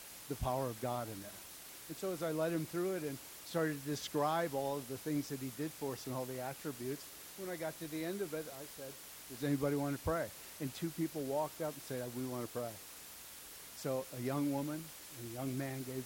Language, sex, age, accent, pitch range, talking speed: English, male, 60-79, American, 125-150 Hz, 250 wpm